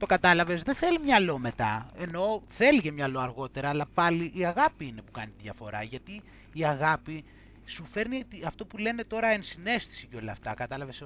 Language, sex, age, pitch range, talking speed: Greek, male, 30-49, 125-185 Hz, 185 wpm